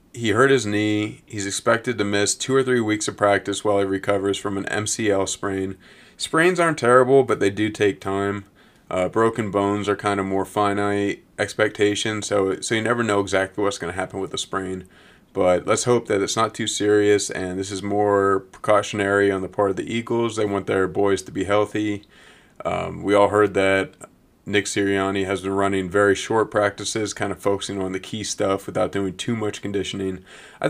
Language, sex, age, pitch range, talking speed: English, male, 30-49, 95-105 Hz, 200 wpm